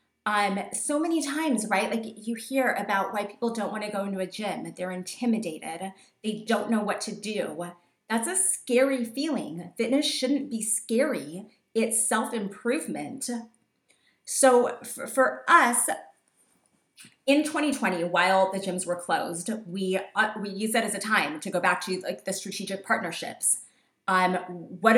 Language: English